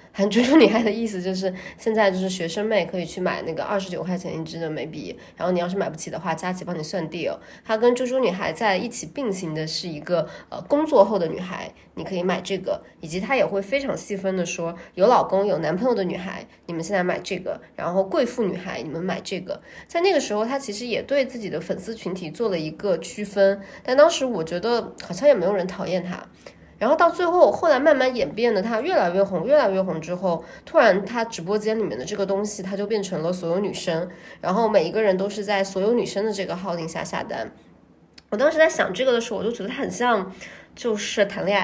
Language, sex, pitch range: Chinese, female, 180-240 Hz